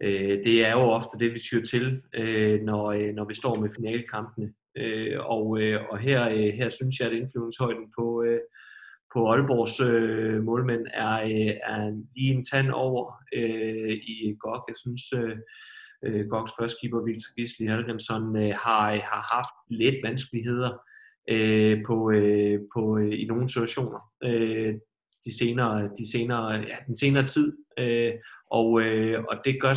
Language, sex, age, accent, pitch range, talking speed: Danish, male, 20-39, native, 110-125 Hz, 125 wpm